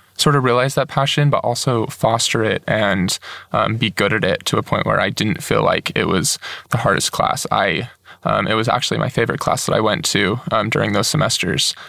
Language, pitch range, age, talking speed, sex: English, 110-130 Hz, 20-39, 220 wpm, male